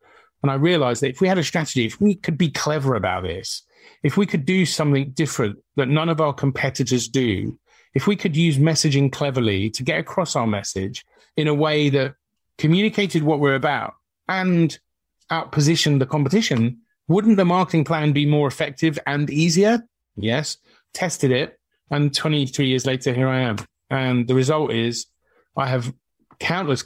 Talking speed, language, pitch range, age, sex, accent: 170 wpm, English, 130-160 Hz, 40-59, male, British